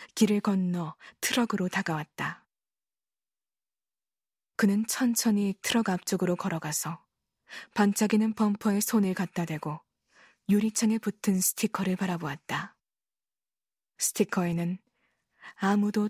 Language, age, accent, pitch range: Korean, 20-39, native, 185-215 Hz